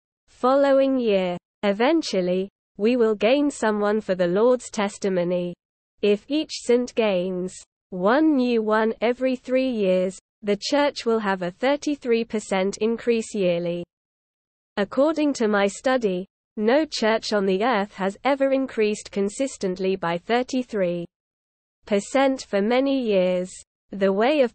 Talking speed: 120 wpm